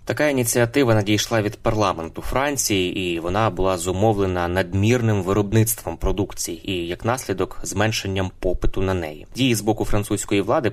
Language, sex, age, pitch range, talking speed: Ukrainian, male, 20-39, 95-110 Hz, 140 wpm